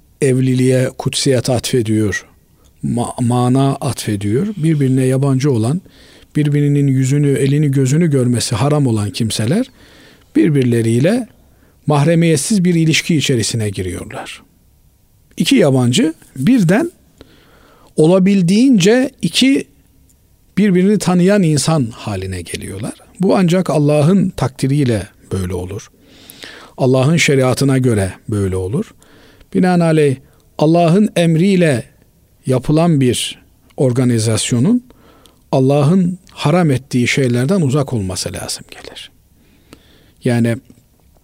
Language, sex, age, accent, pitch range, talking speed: Turkish, male, 50-69, native, 115-160 Hz, 85 wpm